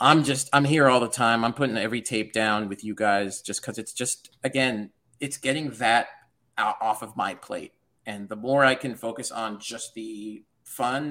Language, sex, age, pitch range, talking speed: English, male, 30-49, 115-165 Hz, 200 wpm